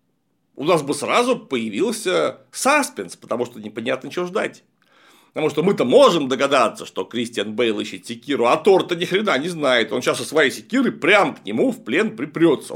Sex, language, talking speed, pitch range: male, Russian, 180 wpm, 140-225 Hz